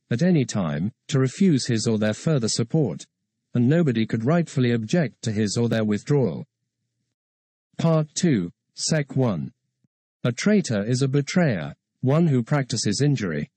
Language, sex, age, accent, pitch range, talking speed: English, male, 50-69, British, 115-155 Hz, 145 wpm